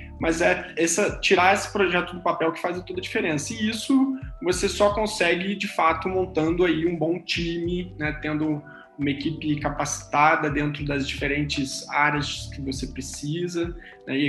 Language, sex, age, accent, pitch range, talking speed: Portuguese, male, 20-39, Brazilian, 150-180 Hz, 160 wpm